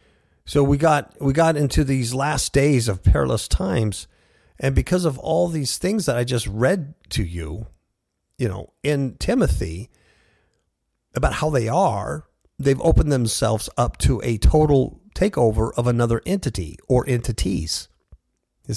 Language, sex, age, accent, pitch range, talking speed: English, male, 50-69, American, 95-150 Hz, 145 wpm